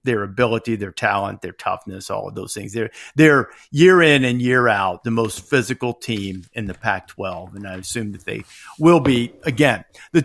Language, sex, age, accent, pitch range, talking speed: English, male, 50-69, American, 125-145 Hz, 195 wpm